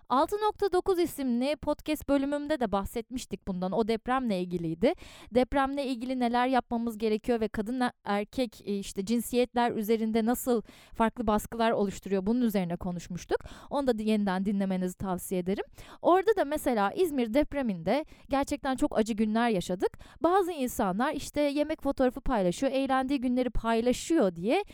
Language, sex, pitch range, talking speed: Turkish, female, 215-275 Hz, 130 wpm